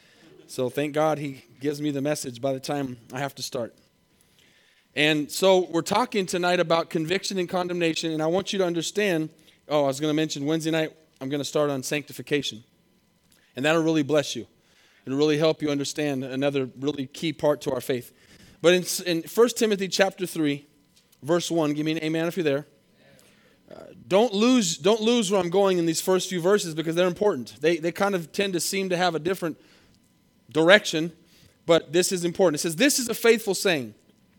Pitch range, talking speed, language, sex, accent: 155-200 Hz, 200 wpm, English, male, American